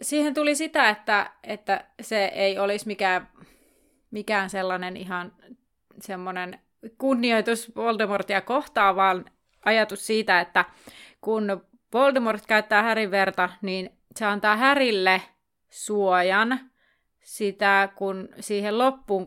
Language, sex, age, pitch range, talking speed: Finnish, female, 30-49, 195-235 Hz, 105 wpm